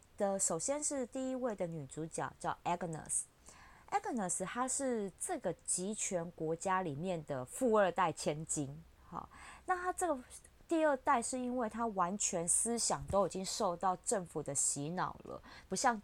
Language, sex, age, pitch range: Chinese, female, 20-39, 165-235 Hz